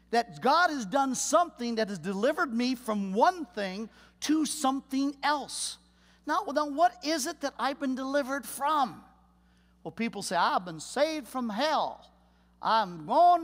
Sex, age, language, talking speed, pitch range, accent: male, 50-69, English, 150 wpm, 215-300 Hz, American